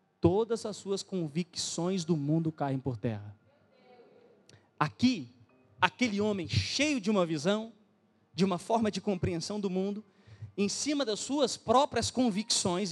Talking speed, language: 135 wpm, Portuguese